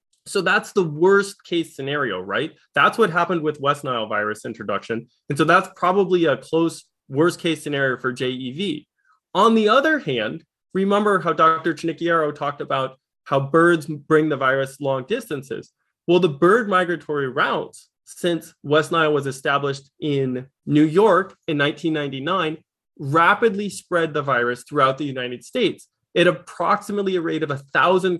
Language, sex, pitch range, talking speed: English, male, 145-195 Hz, 155 wpm